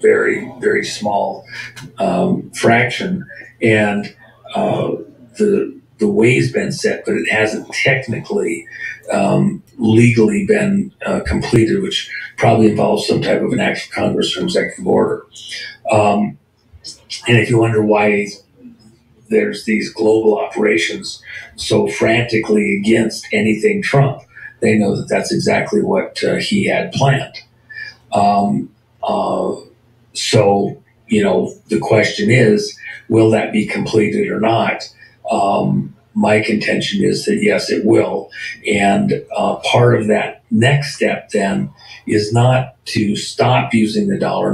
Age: 50-69